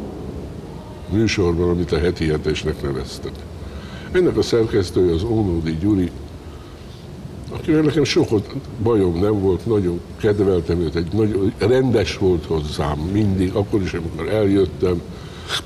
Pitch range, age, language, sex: 80-100 Hz, 60-79, Hungarian, male